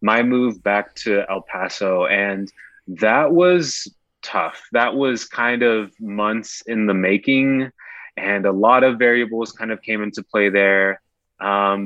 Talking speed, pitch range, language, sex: 150 wpm, 100-120 Hz, English, male